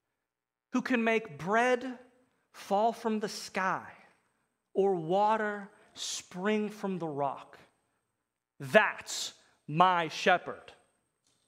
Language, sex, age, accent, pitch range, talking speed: English, male, 30-49, American, 145-195 Hz, 90 wpm